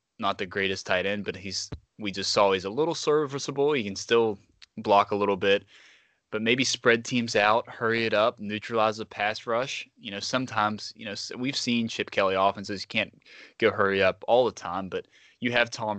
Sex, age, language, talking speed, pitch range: male, 20-39, English, 200 wpm, 95-120 Hz